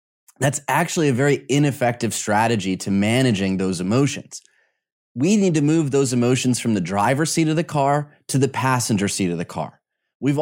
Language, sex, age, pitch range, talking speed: English, male, 30-49, 115-150 Hz, 180 wpm